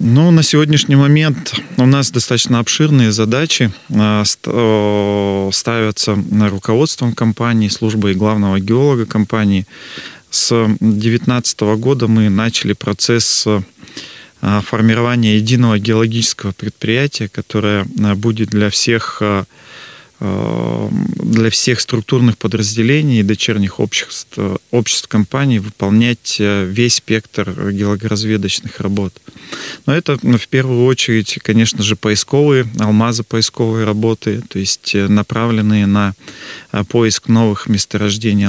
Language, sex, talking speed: Russian, male, 95 wpm